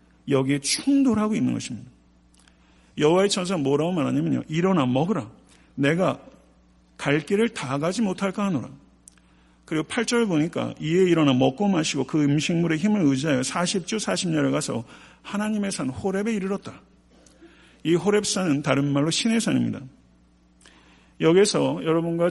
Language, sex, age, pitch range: Korean, male, 50-69, 130-185 Hz